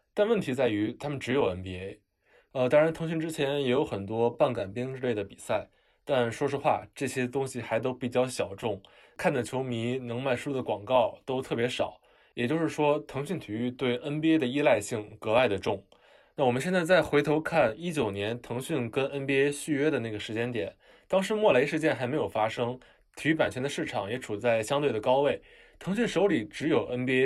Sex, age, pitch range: male, 20-39, 110-145 Hz